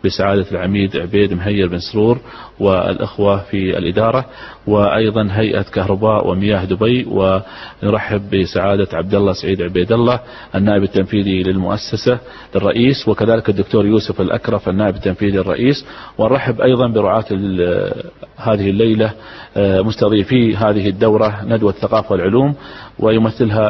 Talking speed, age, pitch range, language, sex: 110 wpm, 40-59, 100-110 Hz, Arabic, male